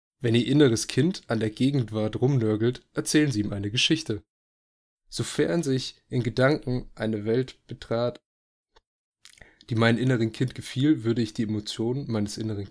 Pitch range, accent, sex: 110-125 Hz, German, male